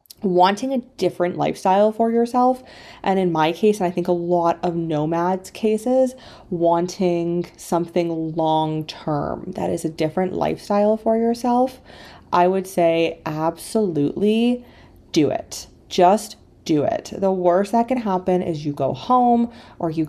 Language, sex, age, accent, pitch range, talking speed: English, female, 30-49, American, 160-205 Hz, 145 wpm